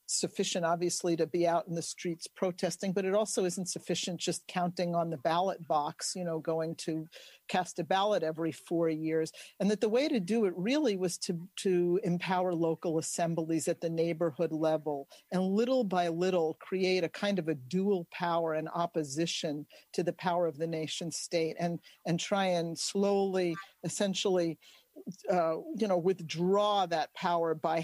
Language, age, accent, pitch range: English, 50-69, American, 165-195 Hz